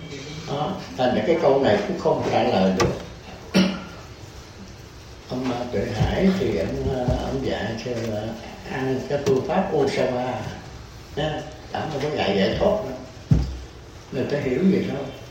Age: 60-79